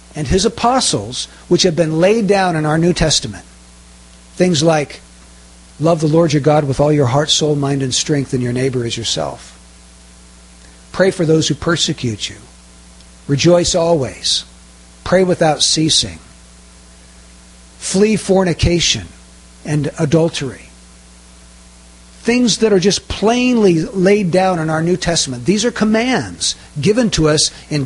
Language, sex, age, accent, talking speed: English, male, 60-79, American, 140 wpm